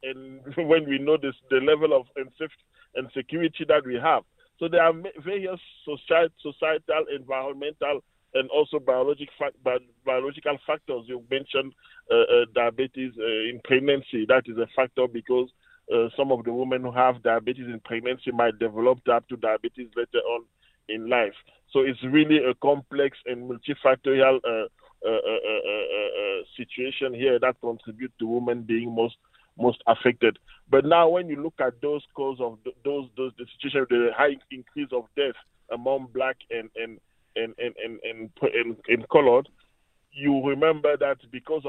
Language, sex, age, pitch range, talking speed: English, male, 40-59, 120-150 Hz, 170 wpm